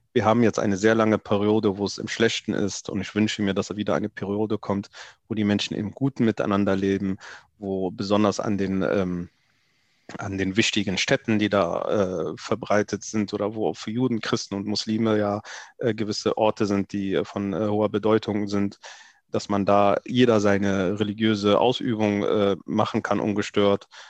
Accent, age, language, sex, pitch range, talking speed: German, 30-49, German, male, 100-115 Hz, 175 wpm